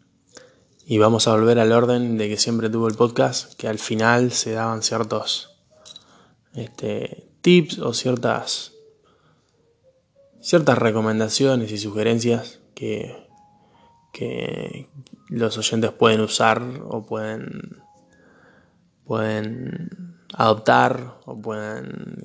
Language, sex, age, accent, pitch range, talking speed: Spanish, male, 20-39, Argentinian, 110-130 Hz, 95 wpm